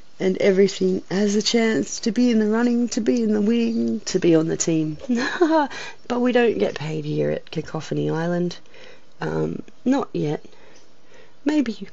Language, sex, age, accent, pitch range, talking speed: English, female, 30-49, Australian, 165-225 Hz, 165 wpm